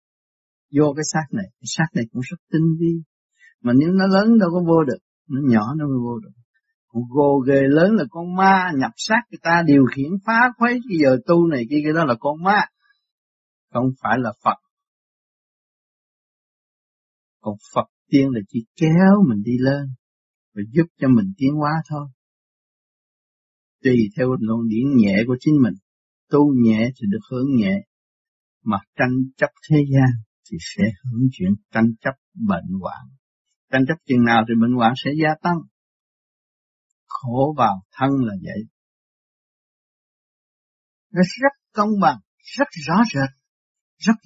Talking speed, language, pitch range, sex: 160 wpm, Vietnamese, 125-190 Hz, male